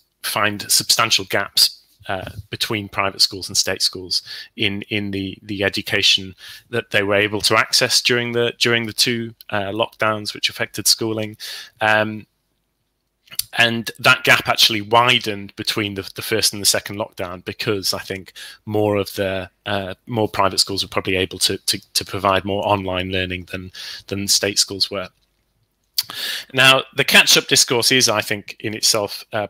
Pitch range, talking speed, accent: 100-110 Hz, 165 wpm, British